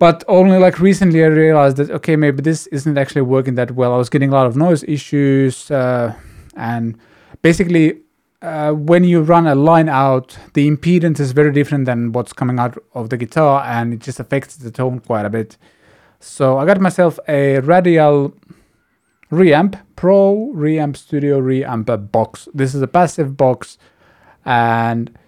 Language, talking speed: English, 170 wpm